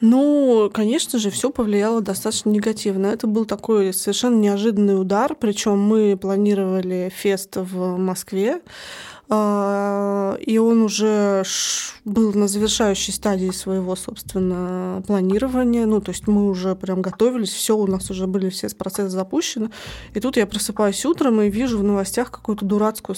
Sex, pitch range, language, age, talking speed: female, 195-225 Hz, Russian, 20-39, 140 wpm